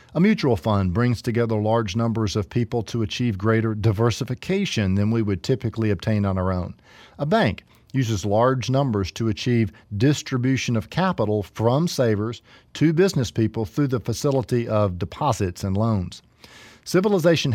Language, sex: English, male